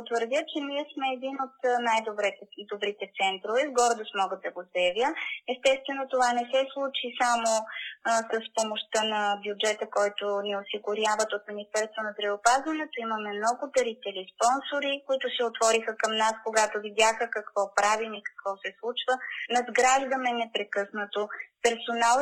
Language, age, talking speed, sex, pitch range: Bulgarian, 20-39, 145 wpm, female, 215-260 Hz